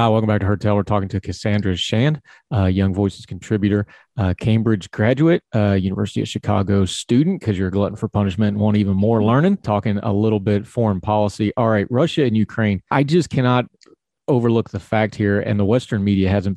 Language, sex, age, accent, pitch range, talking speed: English, male, 30-49, American, 100-115 Hz, 200 wpm